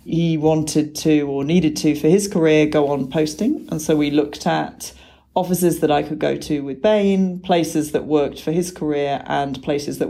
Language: English